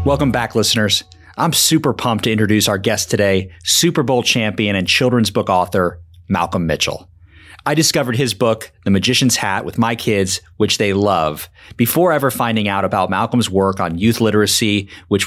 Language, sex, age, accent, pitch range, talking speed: English, male, 30-49, American, 95-120 Hz, 175 wpm